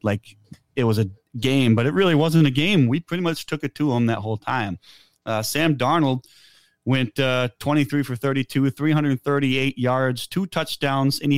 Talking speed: 185 wpm